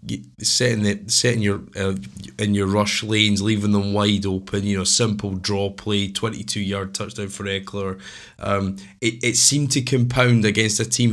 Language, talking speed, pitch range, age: English, 165 wpm, 95-110 Hz, 20-39